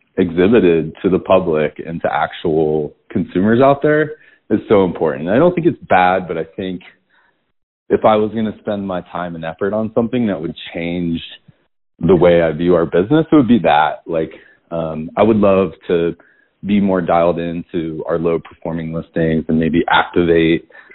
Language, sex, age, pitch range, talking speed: English, male, 30-49, 85-105 Hz, 180 wpm